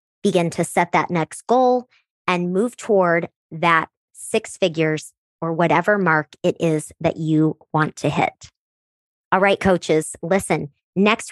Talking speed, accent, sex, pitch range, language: 145 wpm, American, male, 175-215 Hz, English